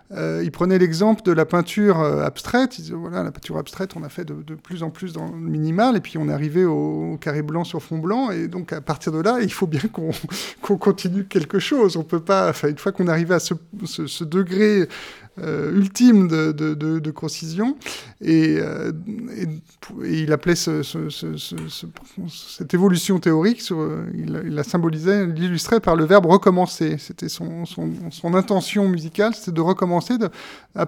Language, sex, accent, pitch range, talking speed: French, male, French, 150-185 Hz, 200 wpm